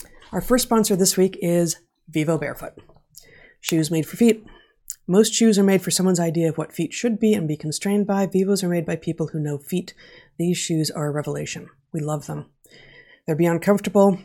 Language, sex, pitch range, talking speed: English, female, 150-185 Hz, 200 wpm